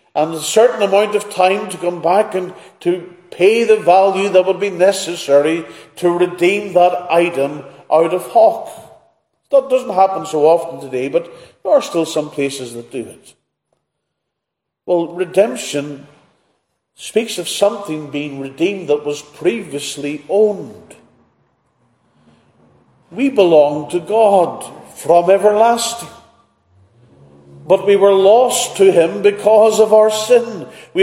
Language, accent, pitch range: English, Irish, 175-225 Hz